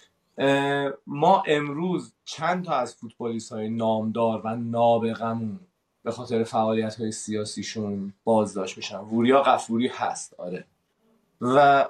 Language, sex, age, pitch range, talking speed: Persian, male, 30-49, 115-150 Hz, 110 wpm